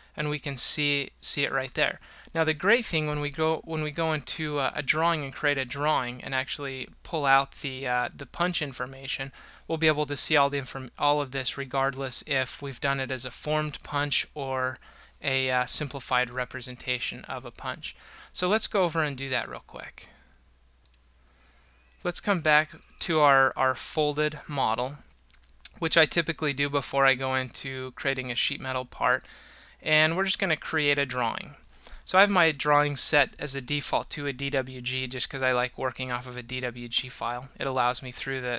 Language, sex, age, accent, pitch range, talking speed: English, male, 20-39, American, 125-150 Hz, 200 wpm